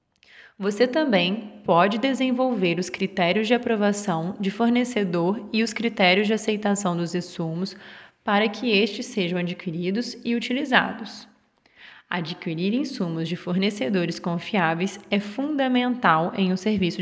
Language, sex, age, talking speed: Portuguese, female, 20-39, 120 wpm